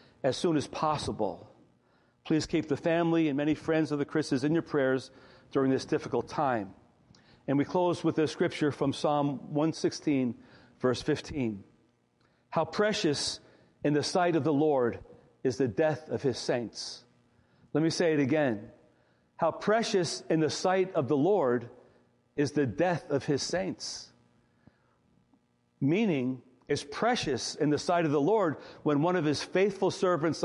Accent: American